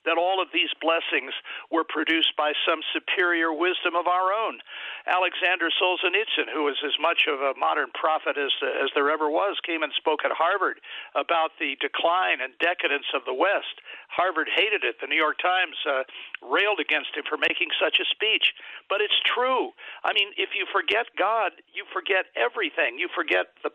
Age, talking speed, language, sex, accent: 60-79, 185 wpm, English, male, American